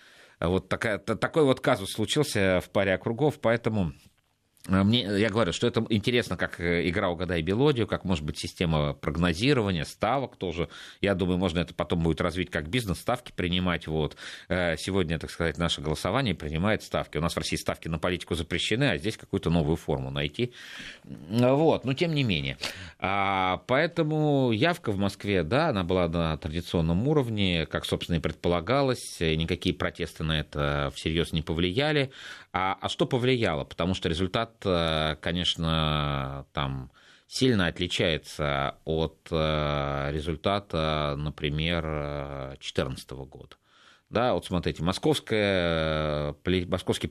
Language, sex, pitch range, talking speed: Russian, male, 80-110 Hz, 135 wpm